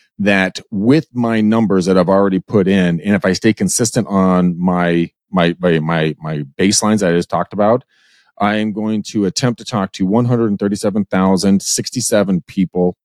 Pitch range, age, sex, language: 90-110 Hz, 30-49, male, English